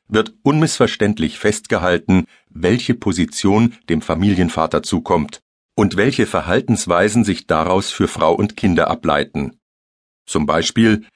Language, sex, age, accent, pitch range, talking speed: German, male, 40-59, German, 85-115 Hz, 110 wpm